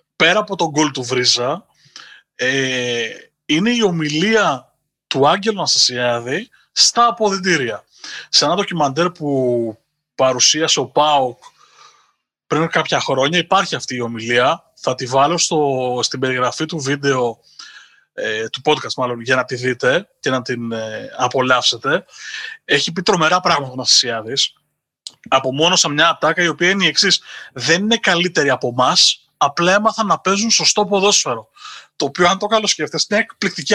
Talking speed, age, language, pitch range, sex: 150 wpm, 30-49, Greek, 130-200 Hz, male